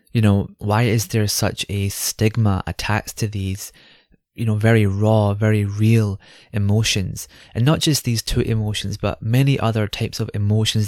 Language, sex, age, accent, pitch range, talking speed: English, male, 20-39, British, 100-115 Hz, 165 wpm